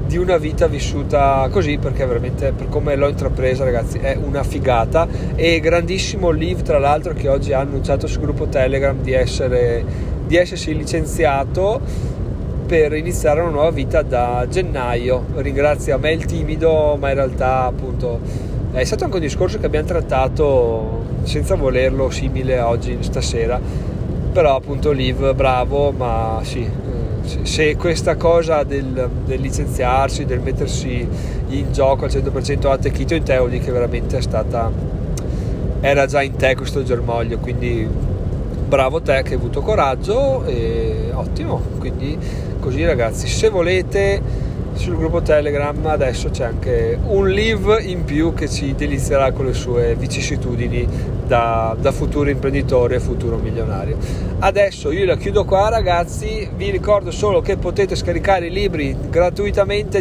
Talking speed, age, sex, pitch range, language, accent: 150 wpm, 30-49, male, 120-145 Hz, Italian, native